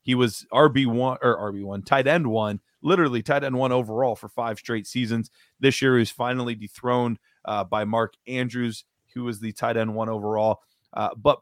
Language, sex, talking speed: English, male, 200 wpm